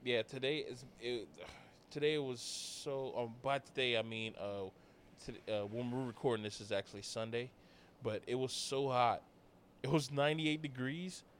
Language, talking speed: English, 165 wpm